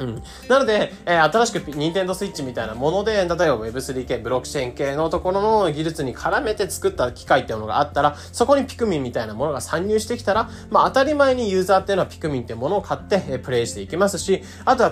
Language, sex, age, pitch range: Japanese, male, 20-39, 125-200 Hz